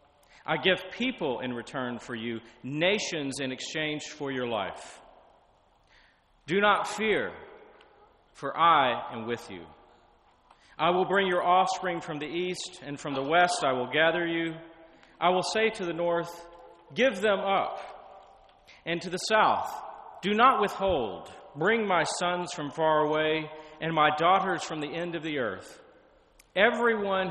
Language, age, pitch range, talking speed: English, 40-59, 135-180 Hz, 150 wpm